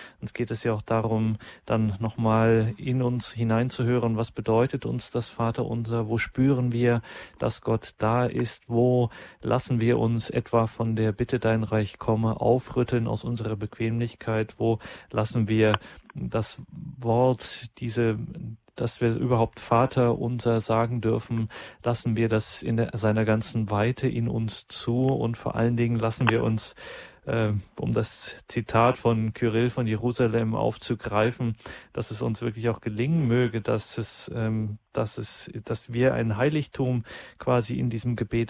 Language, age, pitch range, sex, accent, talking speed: German, 40-59, 110-120 Hz, male, German, 150 wpm